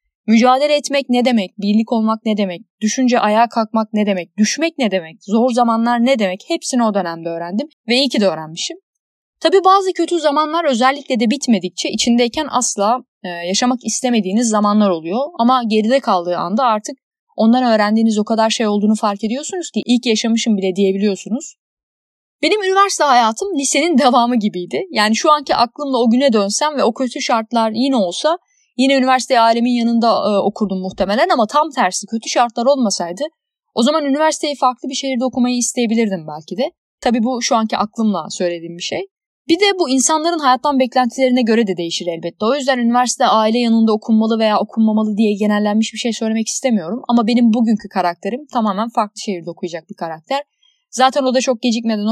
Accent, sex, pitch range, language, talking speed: native, female, 210-270 Hz, Turkish, 170 wpm